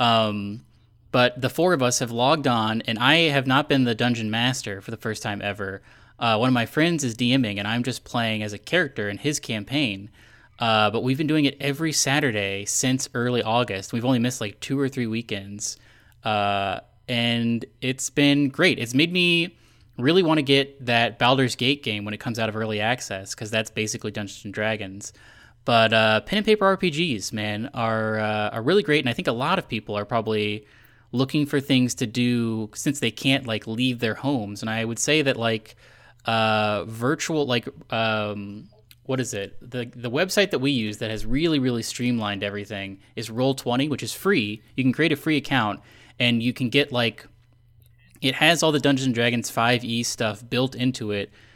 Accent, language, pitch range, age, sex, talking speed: American, English, 110-135 Hz, 10-29, male, 200 wpm